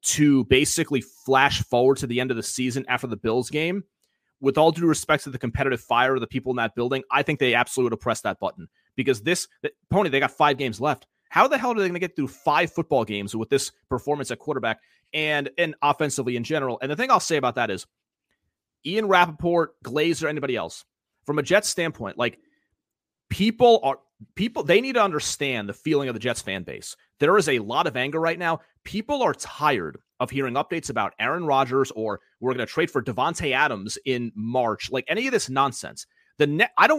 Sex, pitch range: male, 125-170 Hz